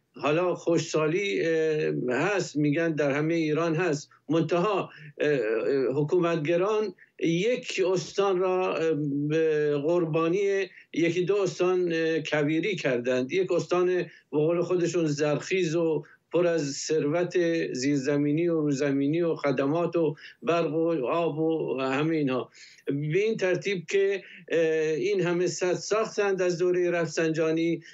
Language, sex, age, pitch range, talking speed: Persian, male, 60-79, 160-205 Hz, 110 wpm